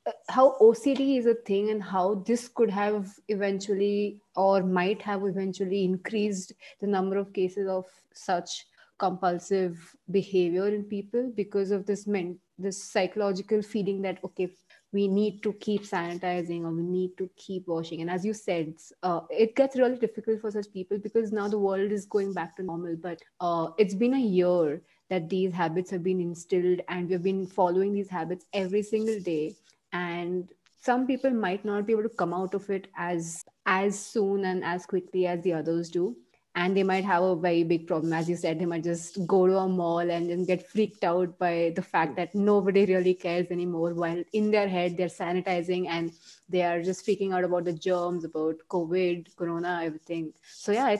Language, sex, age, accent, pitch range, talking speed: English, female, 20-39, Indian, 175-205 Hz, 190 wpm